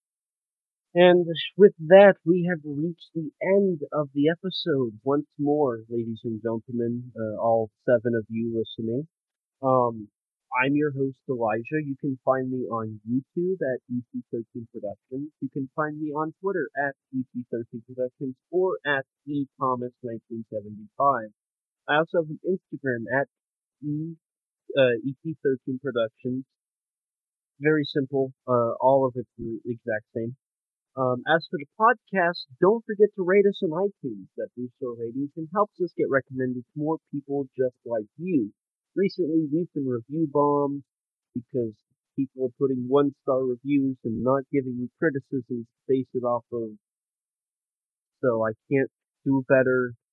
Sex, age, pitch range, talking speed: male, 30-49, 120-150 Hz, 145 wpm